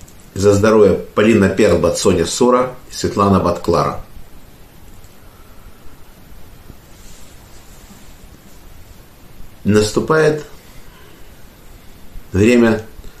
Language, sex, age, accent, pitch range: Russian, male, 50-69, native, 85-115 Hz